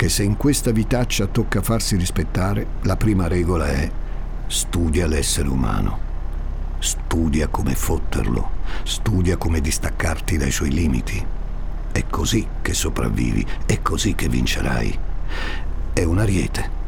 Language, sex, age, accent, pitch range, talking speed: Italian, male, 60-79, native, 65-100 Hz, 125 wpm